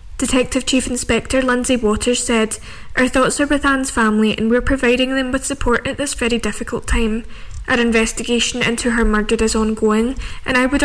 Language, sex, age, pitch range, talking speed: English, female, 10-29, 225-255 Hz, 185 wpm